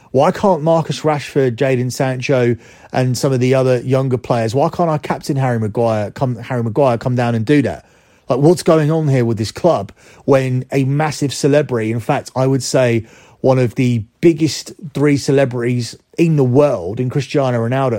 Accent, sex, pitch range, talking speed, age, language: British, male, 120-145 Hz, 185 wpm, 30-49, English